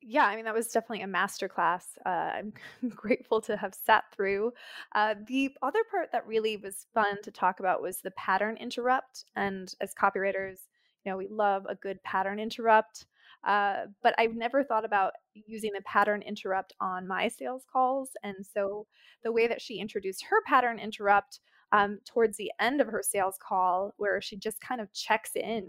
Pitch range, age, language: 200-240 Hz, 20-39, English